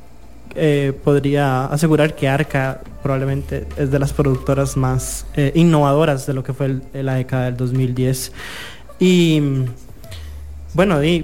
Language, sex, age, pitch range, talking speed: English, male, 20-39, 130-155 Hz, 140 wpm